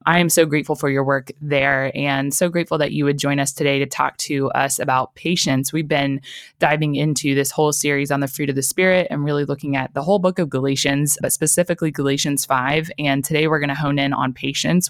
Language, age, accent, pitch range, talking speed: English, 20-39, American, 140-170 Hz, 235 wpm